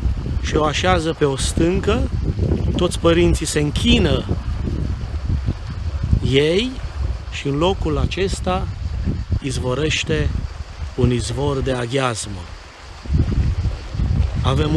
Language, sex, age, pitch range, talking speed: Romanian, male, 40-59, 85-140 Hz, 85 wpm